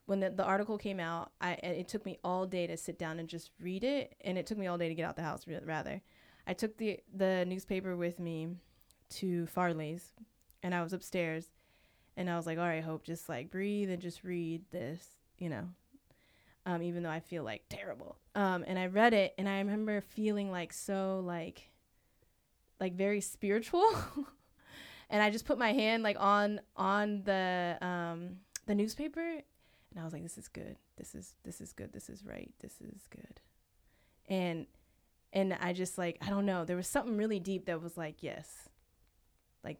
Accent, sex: American, female